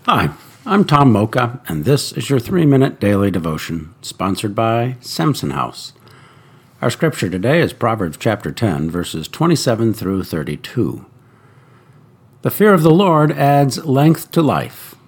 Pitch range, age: 105-140 Hz, 60-79